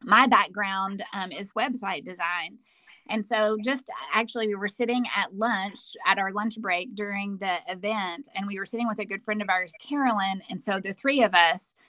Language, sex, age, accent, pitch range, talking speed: English, female, 20-39, American, 195-245 Hz, 195 wpm